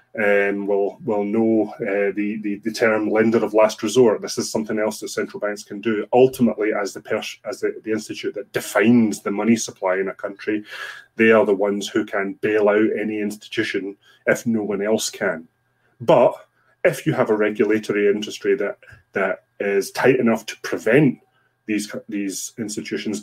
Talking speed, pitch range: 170 wpm, 105-125 Hz